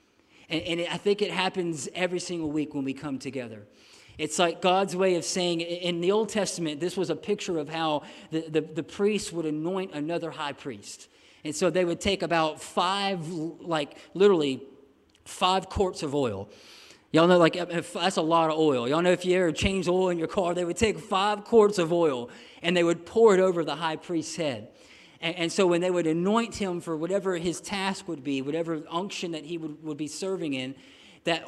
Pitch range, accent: 155-195 Hz, American